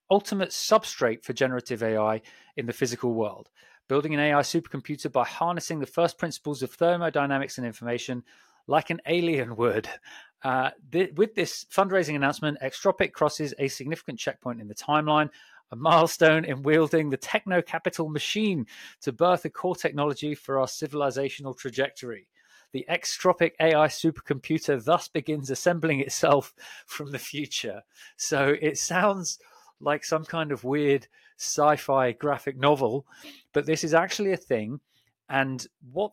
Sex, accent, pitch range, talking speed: male, British, 125-165 Hz, 145 wpm